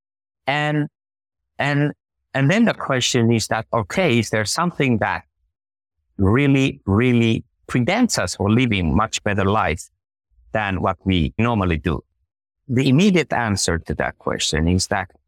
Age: 50-69